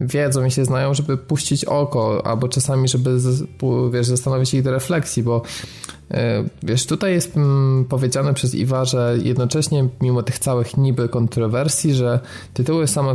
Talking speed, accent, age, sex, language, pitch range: 145 wpm, native, 20-39, male, Polish, 120-140 Hz